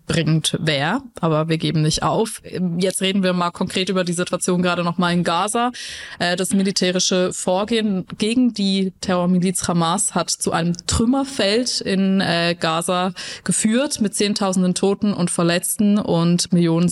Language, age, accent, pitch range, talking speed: German, 20-39, German, 175-210 Hz, 145 wpm